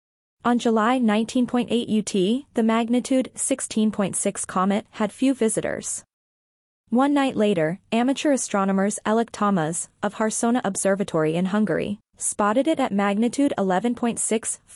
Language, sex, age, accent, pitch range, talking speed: English, female, 20-39, American, 200-245 Hz, 115 wpm